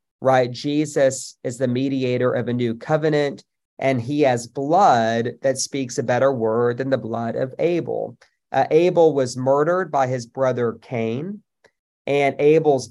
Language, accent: English, American